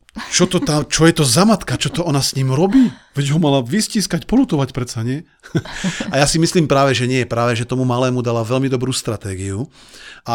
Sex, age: male, 40-59